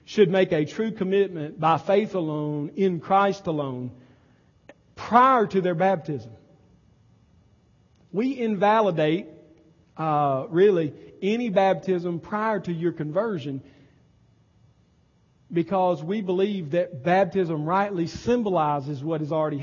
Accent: American